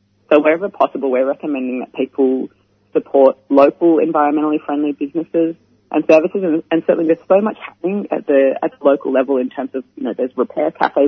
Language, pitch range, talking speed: English, 135-170 Hz, 185 wpm